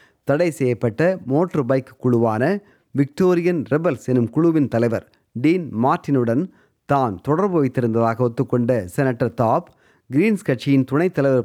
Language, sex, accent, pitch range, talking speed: Tamil, male, native, 115-150 Hz, 110 wpm